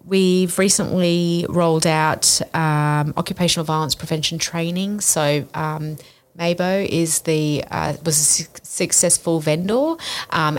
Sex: female